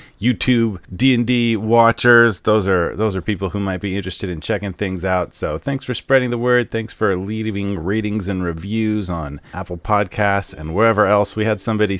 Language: English